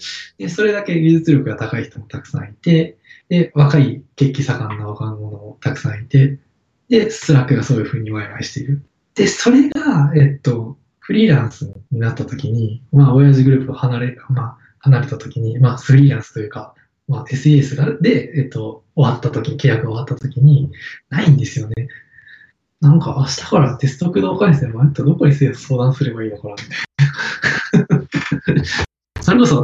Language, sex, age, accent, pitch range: Japanese, male, 20-39, native, 120-150 Hz